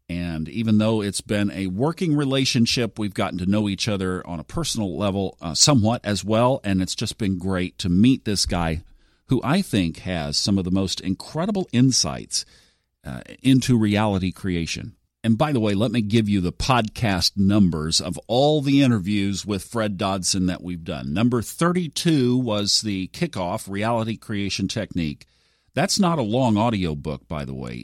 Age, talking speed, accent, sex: 50-69, 180 wpm, American, male